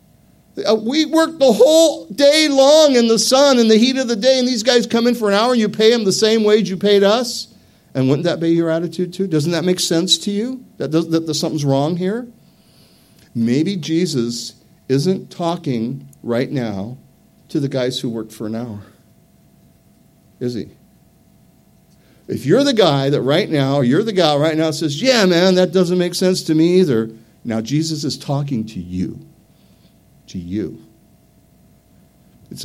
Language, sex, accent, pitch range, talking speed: English, male, American, 120-190 Hz, 180 wpm